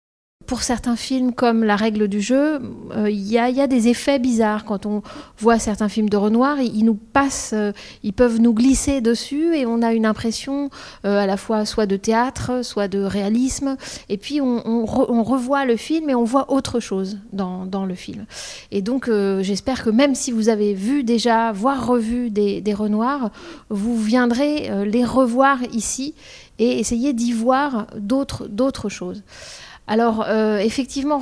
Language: French